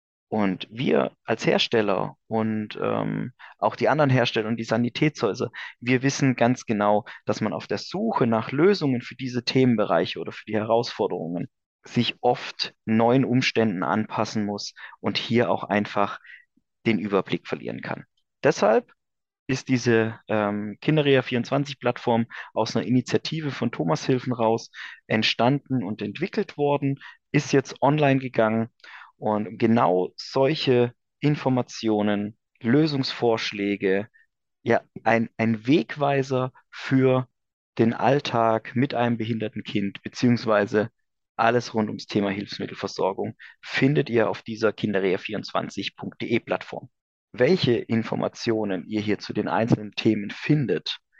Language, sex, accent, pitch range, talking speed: German, male, German, 110-130 Hz, 120 wpm